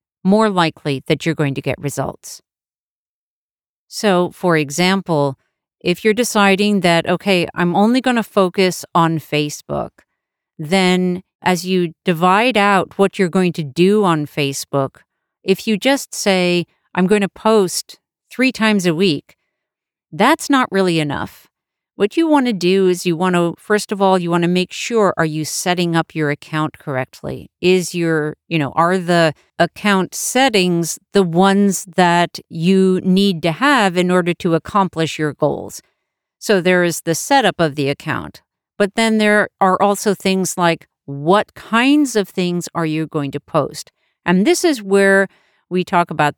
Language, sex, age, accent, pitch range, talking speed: English, female, 40-59, American, 160-200 Hz, 165 wpm